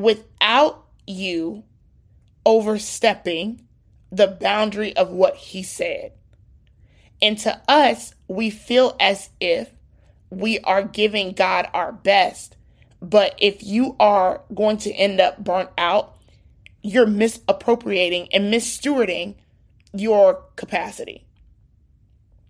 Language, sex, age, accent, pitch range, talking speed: English, male, 30-49, American, 185-230 Hz, 100 wpm